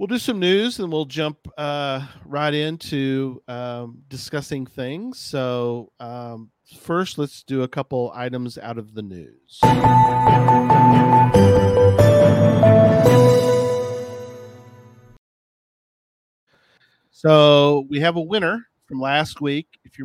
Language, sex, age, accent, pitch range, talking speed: English, male, 40-59, American, 120-140 Hz, 105 wpm